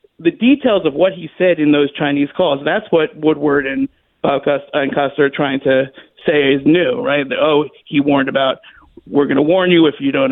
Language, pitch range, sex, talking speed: English, 155-210 Hz, male, 210 wpm